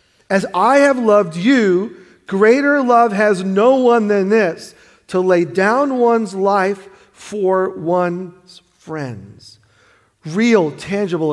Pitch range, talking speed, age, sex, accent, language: 160-200 Hz, 115 wpm, 40-59, male, American, English